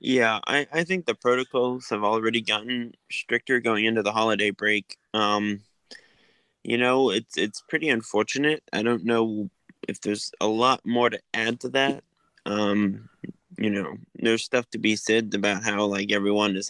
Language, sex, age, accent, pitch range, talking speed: English, male, 20-39, American, 110-130 Hz, 170 wpm